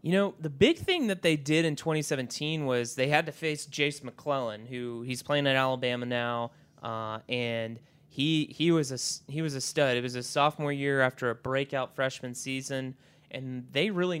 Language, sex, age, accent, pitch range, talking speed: English, male, 30-49, American, 135-165 Hz, 195 wpm